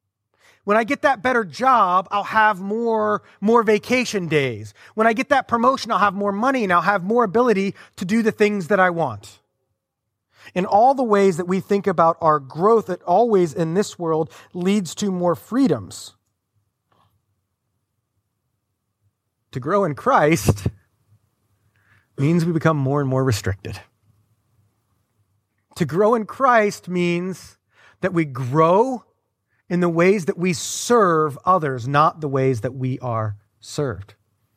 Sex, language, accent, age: male, English, American, 30-49